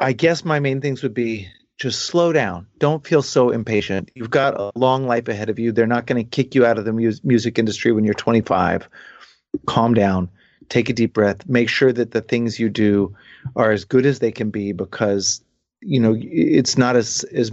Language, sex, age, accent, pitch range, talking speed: English, male, 30-49, American, 105-125 Hz, 215 wpm